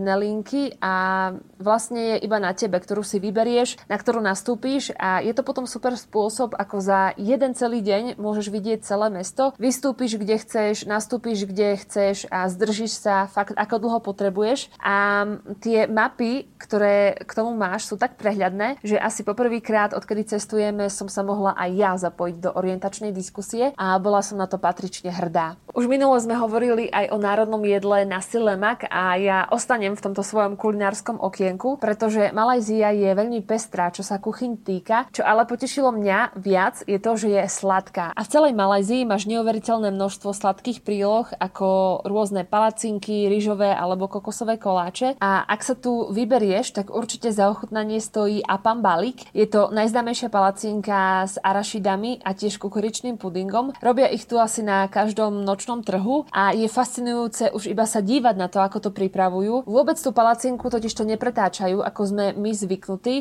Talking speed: 170 wpm